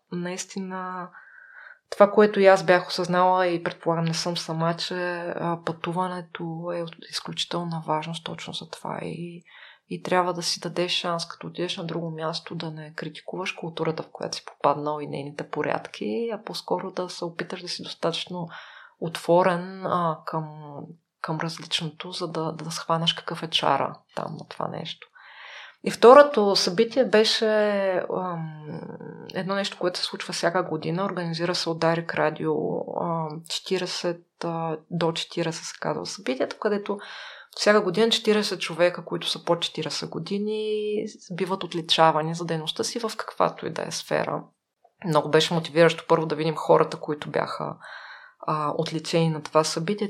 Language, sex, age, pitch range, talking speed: Bulgarian, female, 20-39, 160-190 Hz, 150 wpm